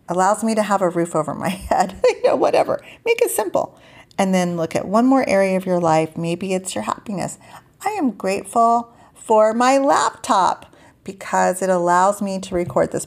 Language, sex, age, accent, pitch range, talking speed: English, female, 40-59, American, 175-230 Hz, 195 wpm